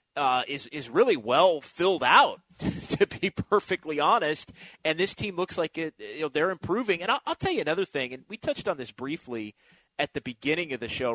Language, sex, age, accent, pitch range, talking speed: English, male, 30-49, American, 135-195 Hz, 215 wpm